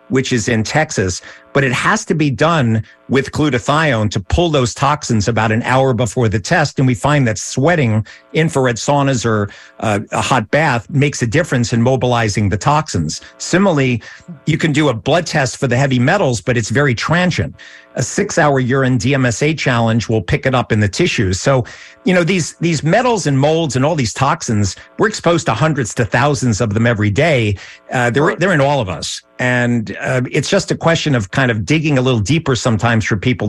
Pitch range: 120-155 Hz